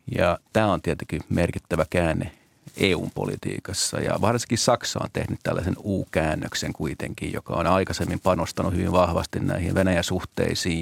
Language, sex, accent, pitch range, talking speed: Finnish, male, native, 90-105 Hz, 130 wpm